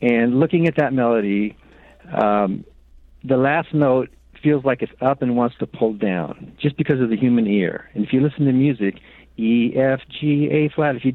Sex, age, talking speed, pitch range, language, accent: male, 50-69, 195 wpm, 130-160 Hz, English, American